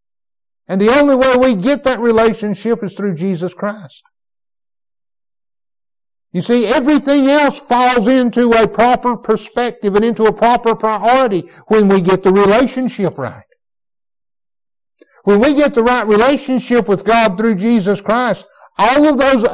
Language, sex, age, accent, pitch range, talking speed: English, male, 60-79, American, 185-240 Hz, 140 wpm